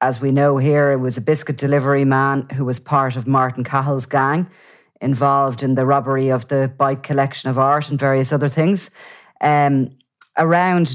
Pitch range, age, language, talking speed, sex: 130-145 Hz, 30-49, English, 180 wpm, female